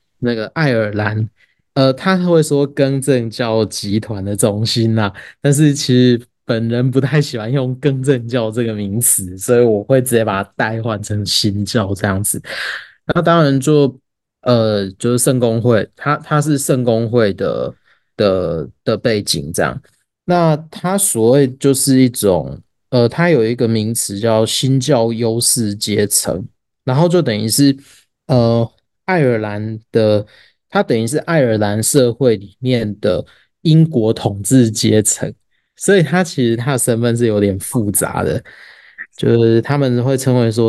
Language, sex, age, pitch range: Chinese, male, 20-39, 110-140 Hz